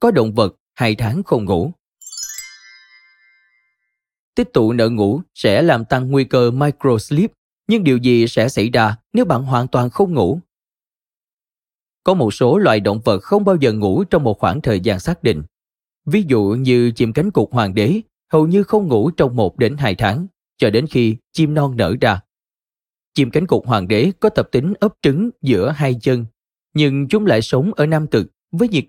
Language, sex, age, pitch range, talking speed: Vietnamese, male, 20-39, 120-185 Hz, 190 wpm